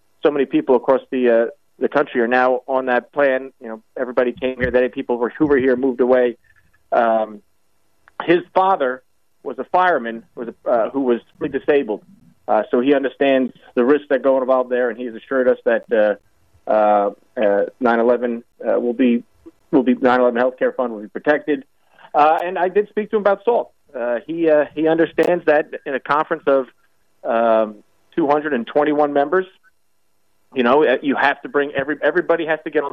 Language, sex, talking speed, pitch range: English, male, 185 wpm, 120-155 Hz